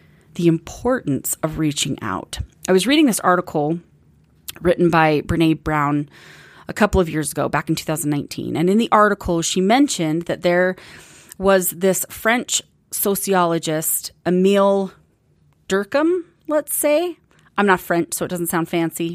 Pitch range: 160-200 Hz